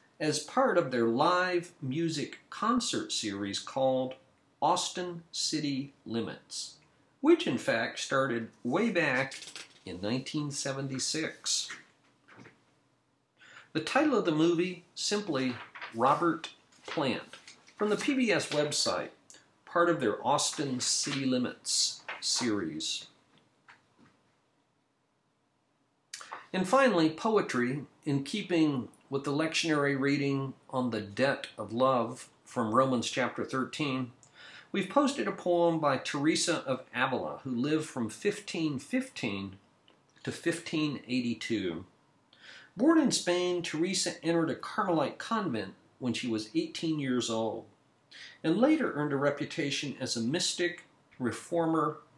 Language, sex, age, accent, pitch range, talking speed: English, male, 50-69, American, 125-170 Hz, 110 wpm